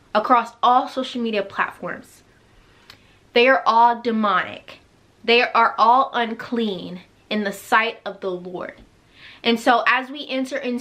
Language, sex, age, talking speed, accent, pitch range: English, female, 20-39, 140 wpm, American, 215-260 Hz